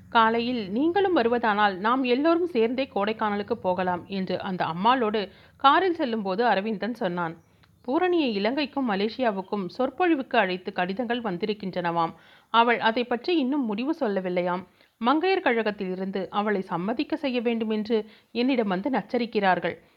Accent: native